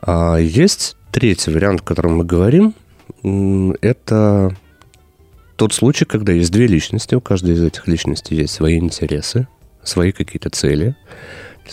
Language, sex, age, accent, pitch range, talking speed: Russian, male, 30-49, native, 85-105 Hz, 140 wpm